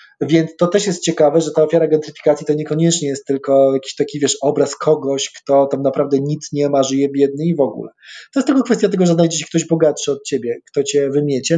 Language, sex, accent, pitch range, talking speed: Polish, male, native, 140-165 Hz, 230 wpm